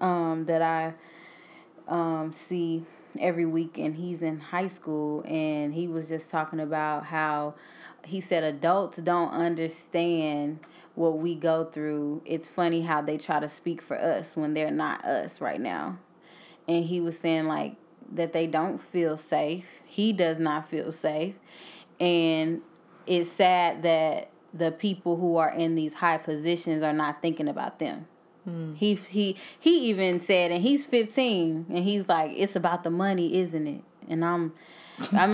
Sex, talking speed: female, 160 wpm